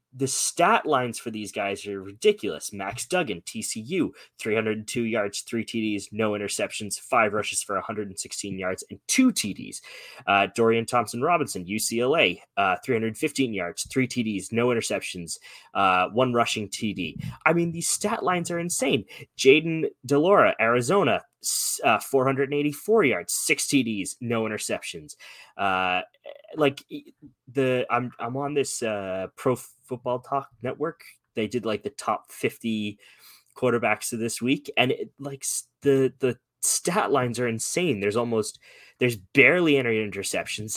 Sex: male